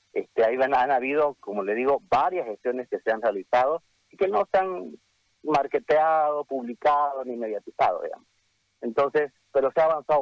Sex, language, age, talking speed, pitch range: male, Spanish, 40-59, 170 wpm, 110-150 Hz